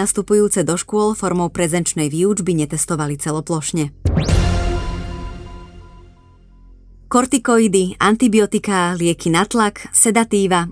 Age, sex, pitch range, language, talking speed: 20-39, female, 175-220 Hz, English, 80 wpm